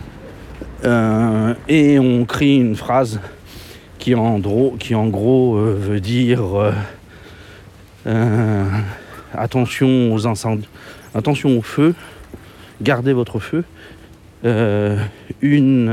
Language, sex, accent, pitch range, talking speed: French, male, French, 100-125 Hz, 105 wpm